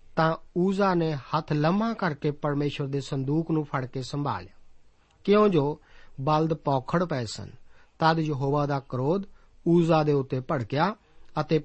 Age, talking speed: 50-69, 145 wpm